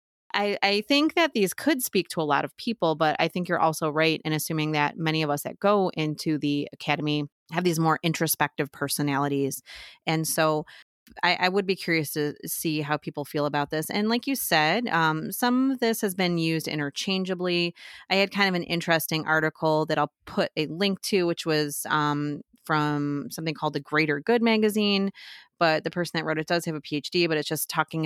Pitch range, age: 150-175 Hz, 30-49